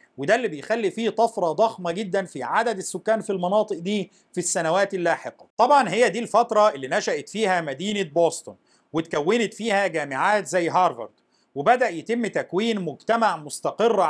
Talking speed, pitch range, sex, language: 150 wpm, 170-225 Hz, male, Arabic